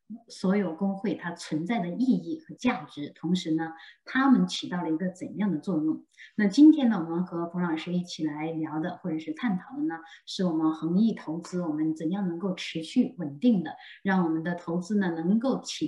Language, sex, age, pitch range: Chinese, female, 30-49, 160-205 Hz